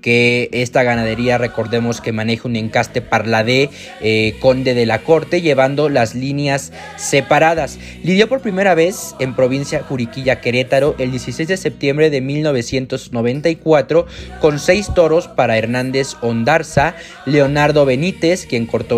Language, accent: Spanish, Mexican